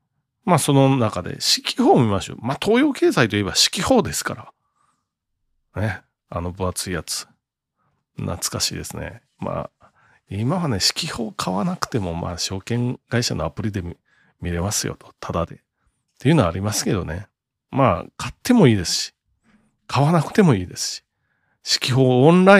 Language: Japanese